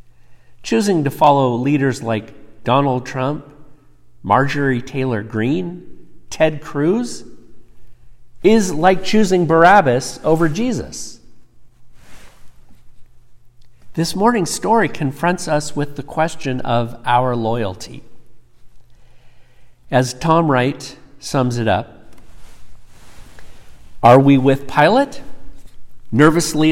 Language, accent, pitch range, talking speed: English, American, 115-145 Hz, 90 wpm